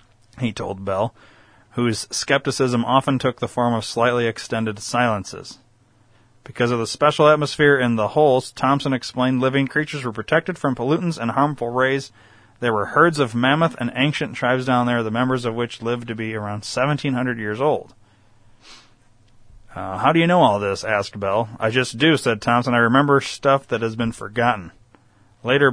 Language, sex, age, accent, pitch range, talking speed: English, male, 30-49, American, 110-140 Hz, 175 wpm